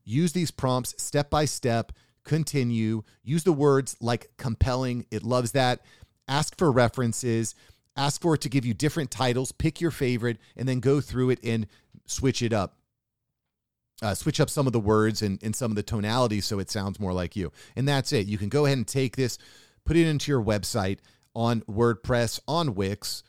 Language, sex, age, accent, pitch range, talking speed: English, male, 40-59, American, 110-135 Hz, 190 wpm